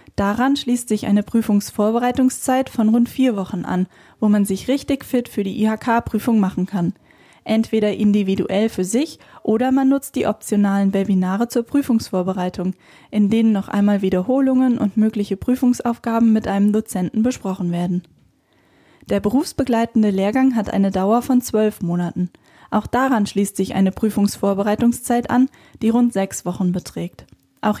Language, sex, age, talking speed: German, female, 10-29, 145 wpm